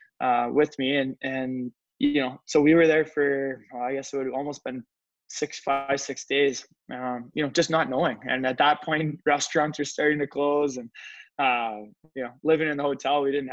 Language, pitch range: English, 125-145 Hz